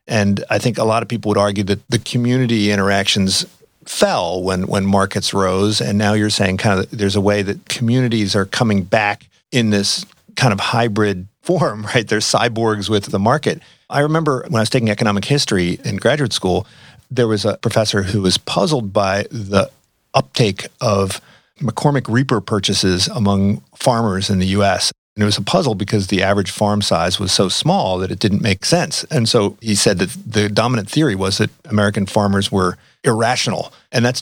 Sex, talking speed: male, 190 wpm